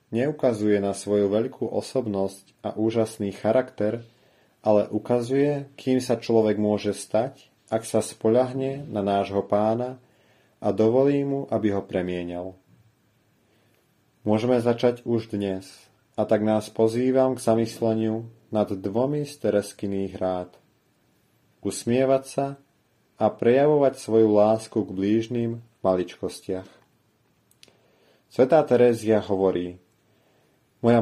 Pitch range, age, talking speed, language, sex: 105-125 Hz, 30-49, 105 wpm, Slovak, male